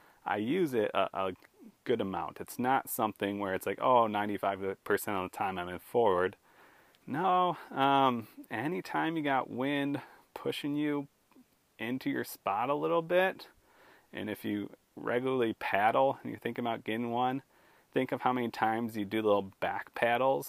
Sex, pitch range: male, 95-125 Hz